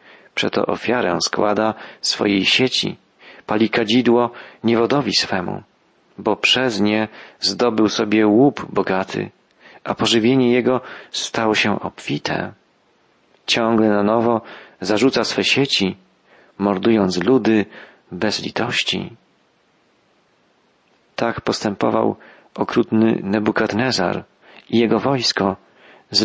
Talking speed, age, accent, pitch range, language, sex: 95 wpm, 40-59, native, 100-120 Hz, Polish, male